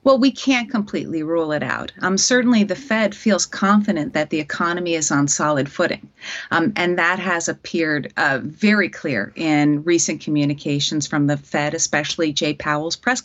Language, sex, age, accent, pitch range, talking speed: English, female, 30-49, American, 170-225 Hz, 175 wpm